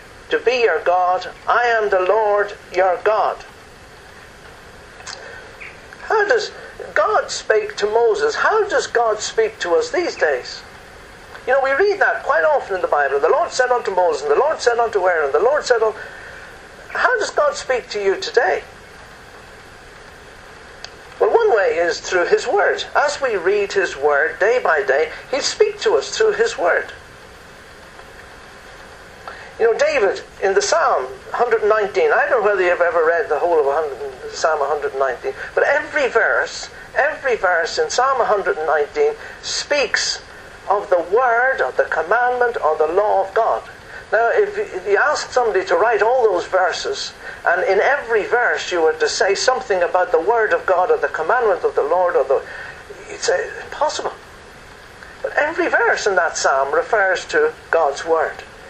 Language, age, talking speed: English, 60-79, 170 wpm